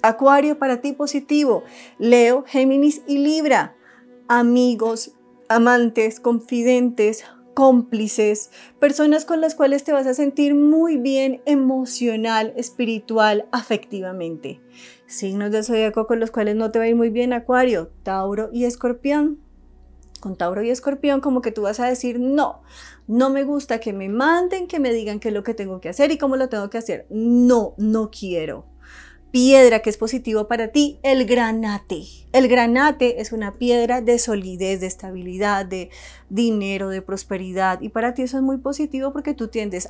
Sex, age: female, 30-49